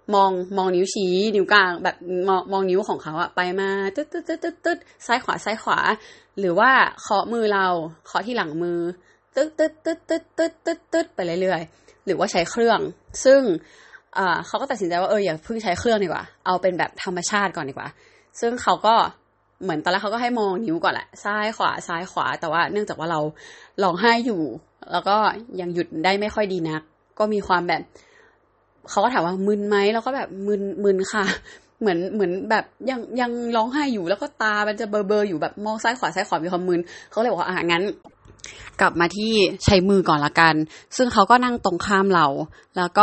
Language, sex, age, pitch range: Thai, female, 20-39, 175-220 Hz